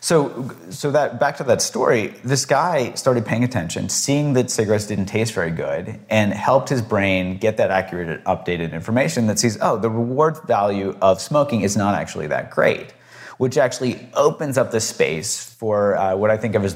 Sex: male